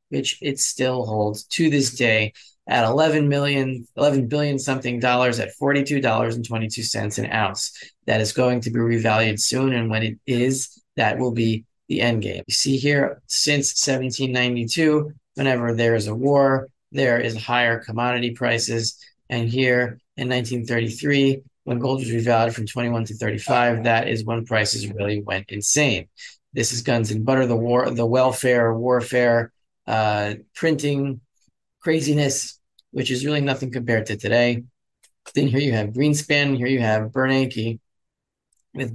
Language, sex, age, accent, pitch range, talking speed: English, male, 30-49, American, 115-135 Hz, 155 wpm